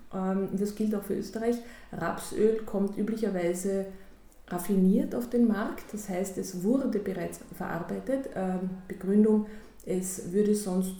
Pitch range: 175-215 Hz